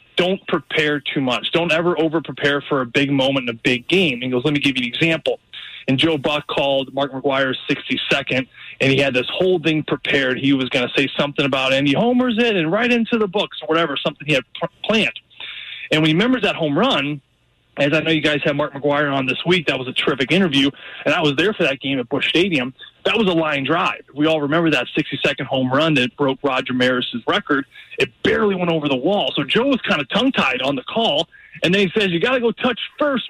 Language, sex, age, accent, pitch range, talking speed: English, male, 20-39, American, 140-185 Hz, 245 wpm